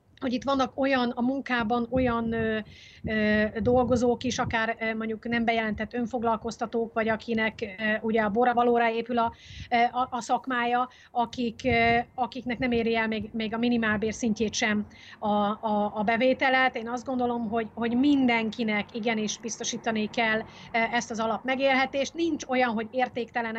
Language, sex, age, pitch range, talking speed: Hungarian, female, 30-49, 225-250 Hz, 145 wpm